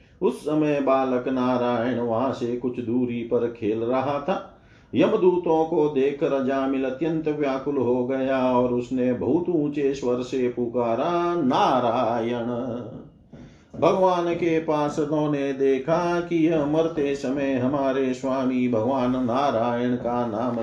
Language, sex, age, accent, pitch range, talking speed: Hindi, male, 50-69, native, 120-150 Hz, 130 wpm